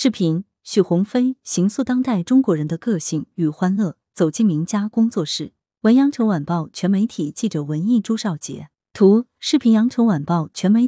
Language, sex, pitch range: Chinese, female, 160-225 Hz